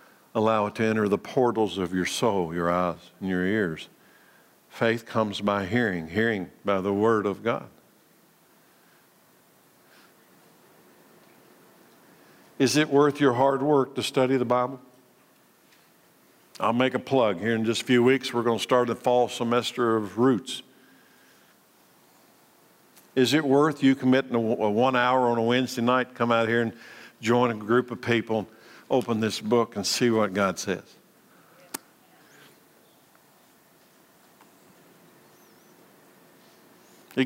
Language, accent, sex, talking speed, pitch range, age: English, American, male, 135 wpm, 110-130 Hz, 60-79